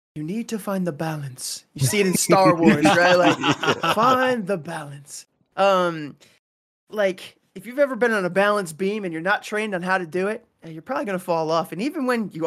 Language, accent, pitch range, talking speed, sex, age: English, American, 165-215 Hz, 220 wpm, male, 20-39